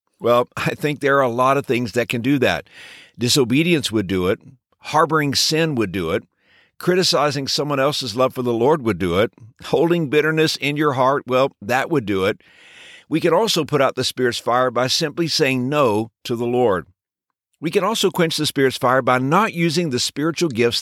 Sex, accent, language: male, American, English